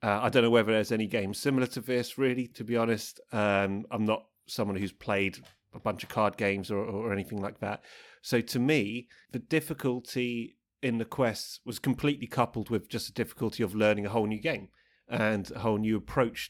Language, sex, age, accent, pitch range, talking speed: English, male, 30-49, British, 100-125 Hz, 205 wpm